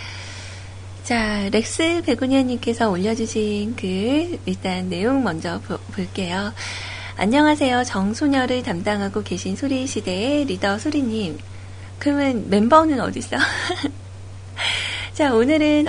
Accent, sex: native, female